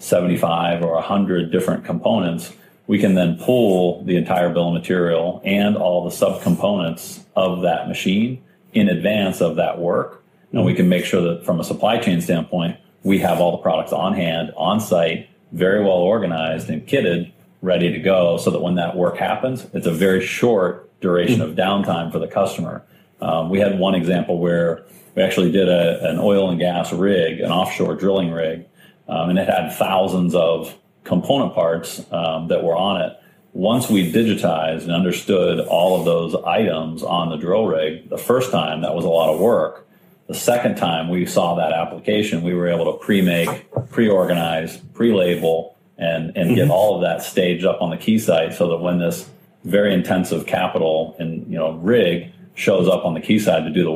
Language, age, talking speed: English, 40-59, 190 wpm